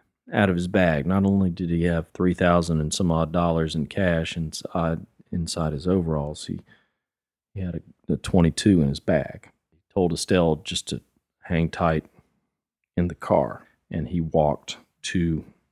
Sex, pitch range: male, 80-90 Hz